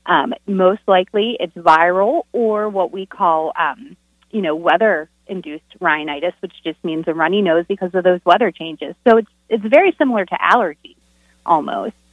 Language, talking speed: English, 170 wpm